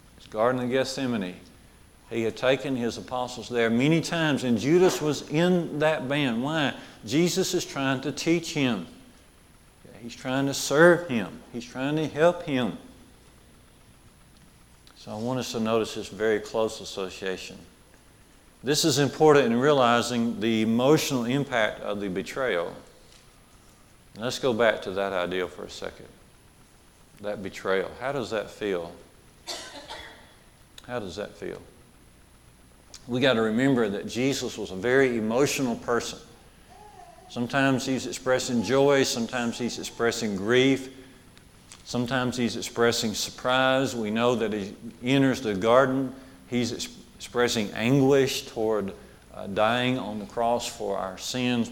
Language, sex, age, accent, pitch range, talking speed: English, male, 50-69, American, 110-135 Hz, 135 wpm